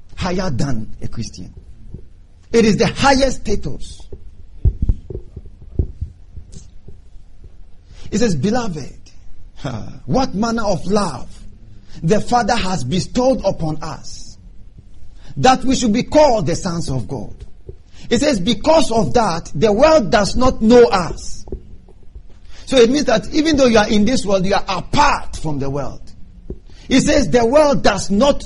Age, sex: 50-69, male